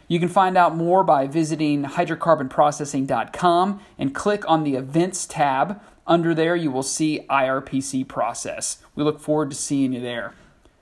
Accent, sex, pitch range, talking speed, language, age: American, male, 140-180 Hz, 155 wpm, English, 40-59